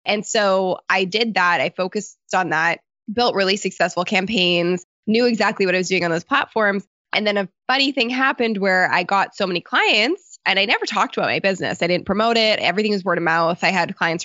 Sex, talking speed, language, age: female, 225 wpm, English, 20-39